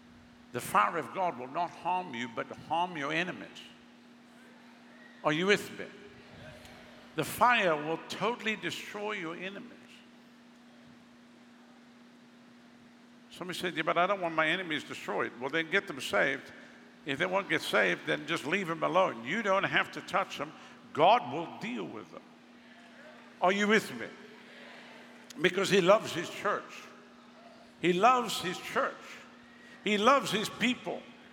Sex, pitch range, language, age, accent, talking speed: male, 190-240 Hz, English, 60-79, American, 145 wpm